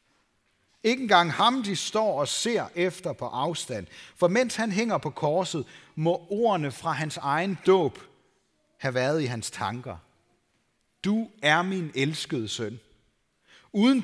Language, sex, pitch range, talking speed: Danish, male, 135-185 Hz, 140 wpm